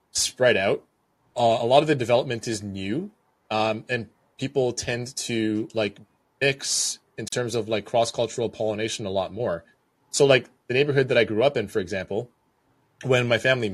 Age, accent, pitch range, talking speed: 20-39, American, 105-125 Hz, 180 wpm